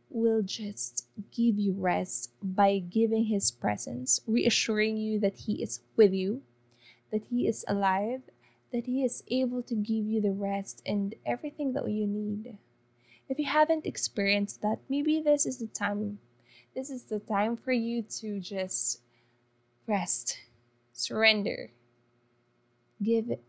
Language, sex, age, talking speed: English, female, 20-39, 140 wpm